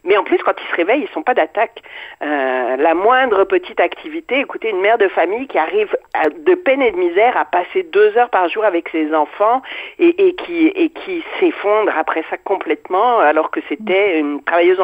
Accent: French